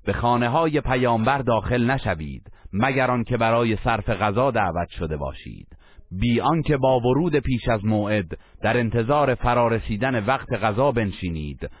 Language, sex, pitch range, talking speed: Persian, male, 95-125 Hz, 135 wpm